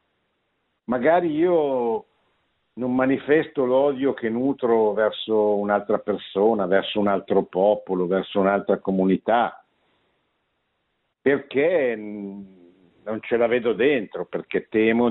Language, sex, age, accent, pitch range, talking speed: Italian, male, 60-79, native, 95-125 Hz, 100 wpm